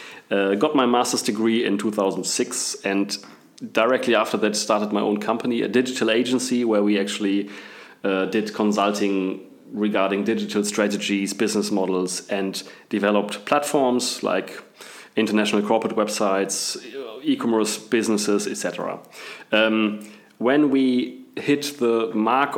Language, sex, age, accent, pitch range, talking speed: English, male, 30-49, German, 105-130 Hz, 120 wpm